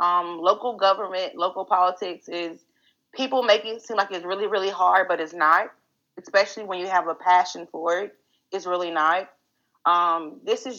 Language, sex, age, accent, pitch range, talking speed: English, female, 30-49, American, 175-210 Hz, 180 wpm